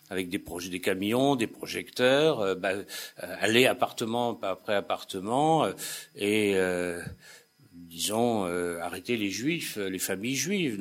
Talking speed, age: 140 wpm, 60-79